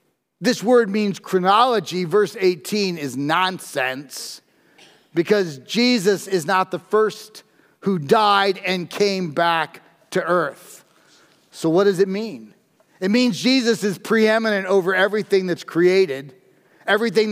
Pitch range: 180-225 Hz